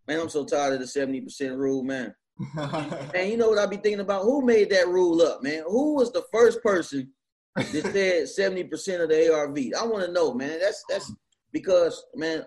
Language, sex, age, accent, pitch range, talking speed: English, male, 30-49, American, 140-195 Hz, 205 wpm